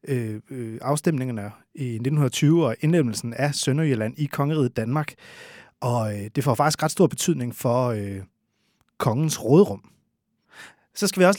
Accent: native